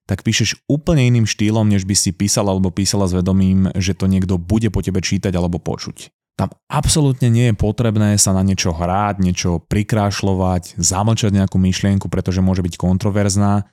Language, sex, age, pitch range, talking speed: Slovak, male, 20-39, 95-115 Hz, 175 wpm